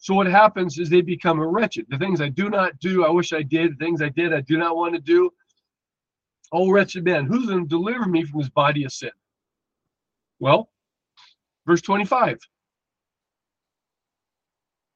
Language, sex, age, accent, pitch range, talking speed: English, male, 50-69, American, 160-205 Hz, 170 wpm